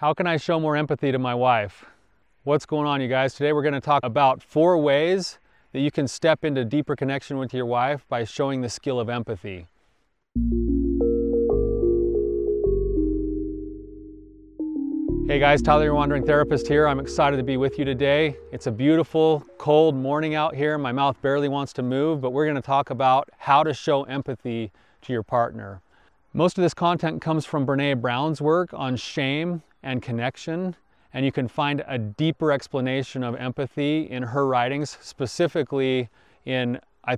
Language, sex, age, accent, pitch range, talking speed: English, male, 30-49, American, 125-150 Hz, 170 wpm